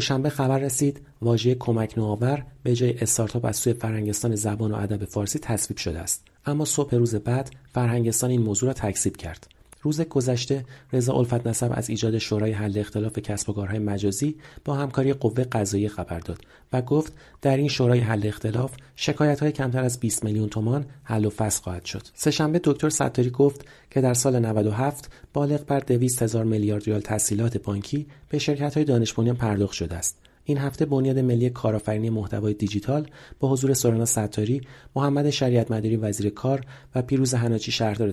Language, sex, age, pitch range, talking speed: Persian, male, 40-59, 105-135 Hz, 175 wpm